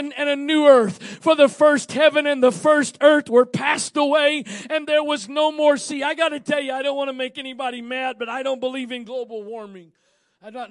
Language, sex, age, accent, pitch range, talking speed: English, male, 40-59, American, 220-290 Hz, 235 wpm